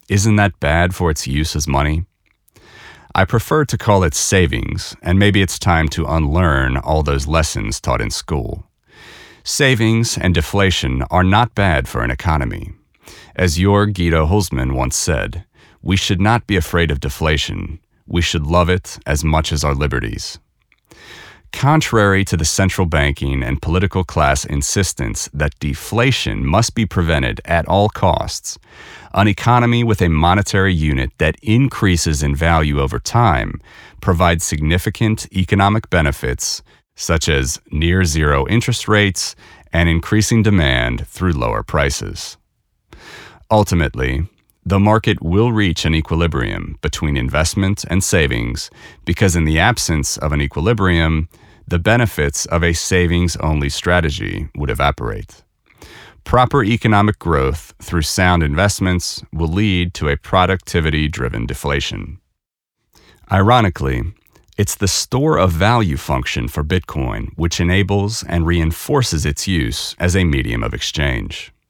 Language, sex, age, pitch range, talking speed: English, male, 40-59, 75-100 Hz, 130 wpm